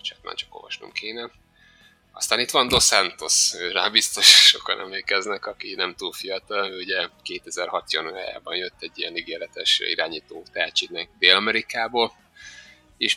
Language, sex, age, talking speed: Hungarian, male, 30-49, 130 wpm